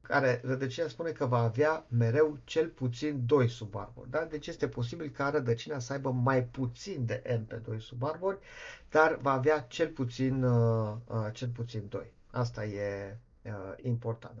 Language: Romanian